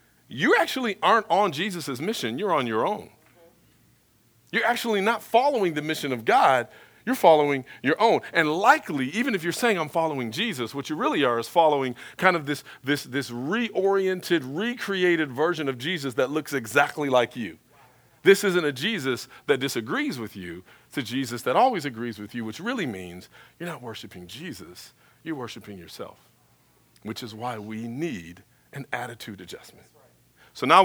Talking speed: 170 wpm